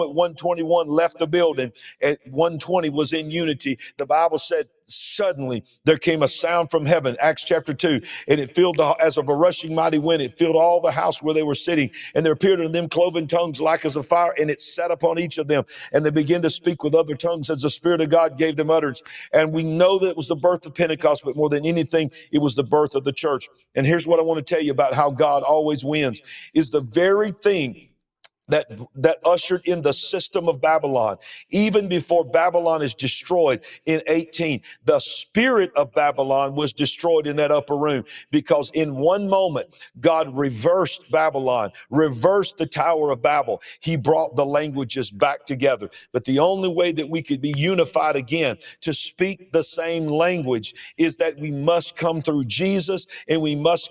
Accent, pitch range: American, 150-170 Hz